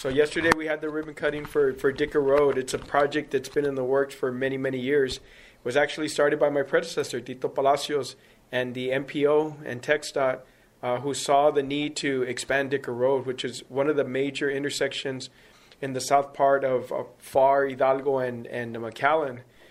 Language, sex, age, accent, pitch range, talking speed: English, male, 40-59, American, 130-150 Hz, 190 wpm